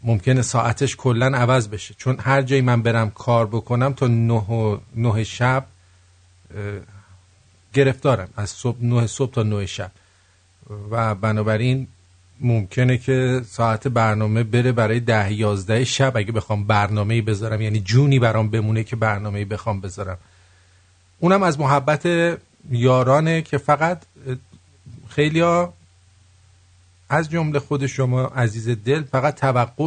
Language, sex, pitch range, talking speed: English, male, 95-130 Hz, 125 wpm